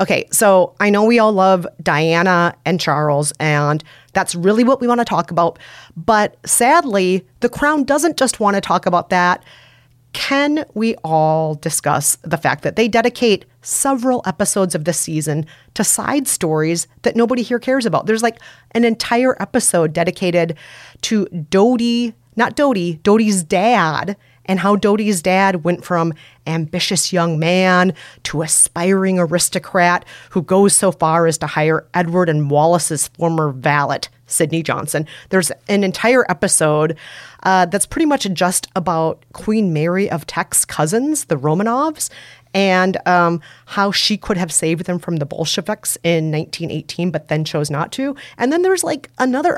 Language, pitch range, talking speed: English, 160-215 Hz, 155 wpm